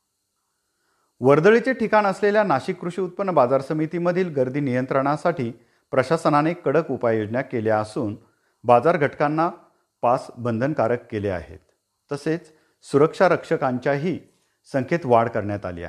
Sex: male